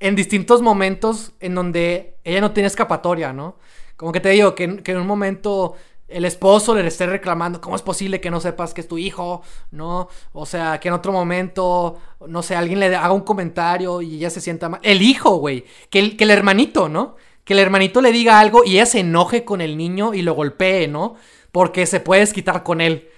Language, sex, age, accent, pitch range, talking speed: Spanish, male, 20-39, Mexican, 165-200 Hz, 215 wpm